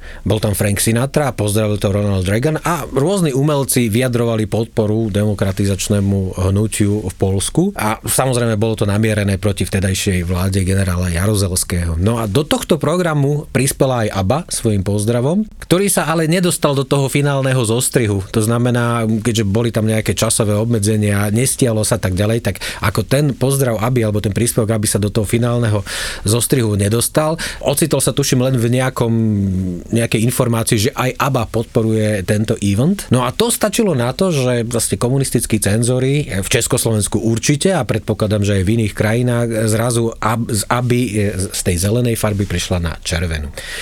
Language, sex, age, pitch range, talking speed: Slovak, male, 40-59, 105-125 Hz, 160 wpm